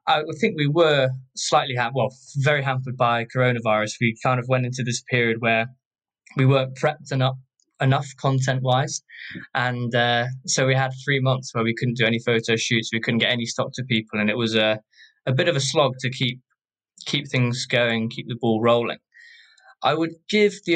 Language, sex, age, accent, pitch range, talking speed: English, male, 10-29, British, 120-135 Hz, 195 wpm